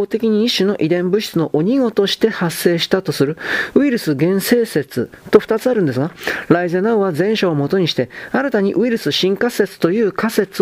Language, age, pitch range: Japanese, 40-59, 160-210 Hz